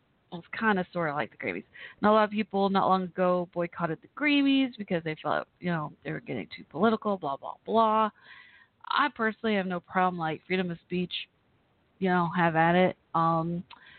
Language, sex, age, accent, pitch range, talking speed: English, female, 30-49, American, 165-195 Hz, 195 wpm